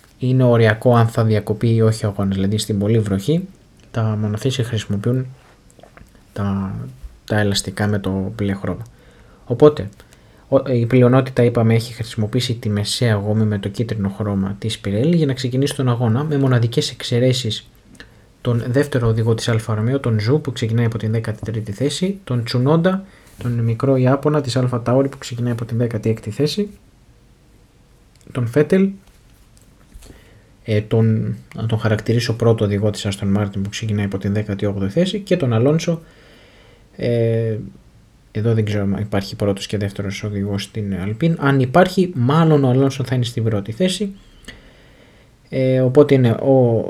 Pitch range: 105-130 Hz